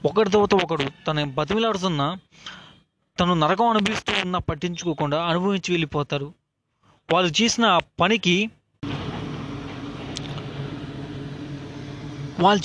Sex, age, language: male, 20-39, Telugu